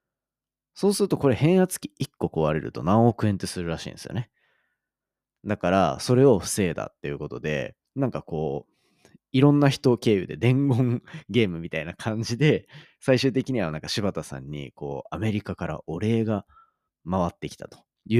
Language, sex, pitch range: Japanese, male, 80-125 Hz